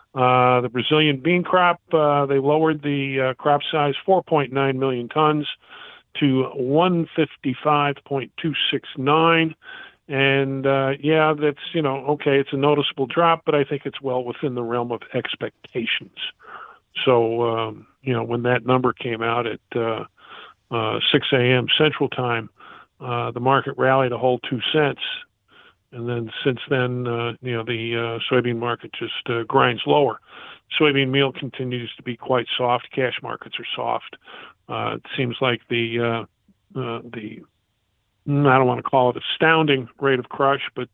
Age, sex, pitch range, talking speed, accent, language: 50-69, male, 120-145 Hz, 155 wpm, American, English